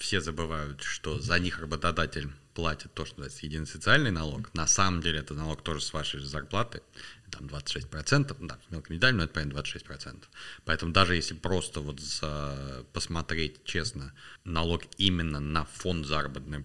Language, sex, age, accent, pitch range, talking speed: Russian, male, 30-49, native, 75-100 Hz, 150 wpm